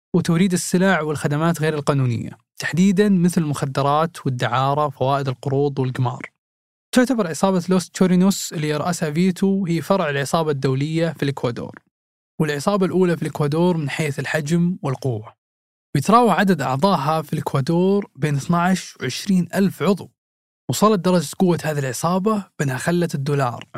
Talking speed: 130 wpm